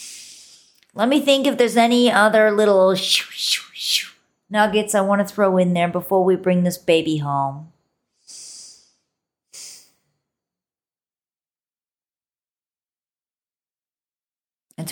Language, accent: English, American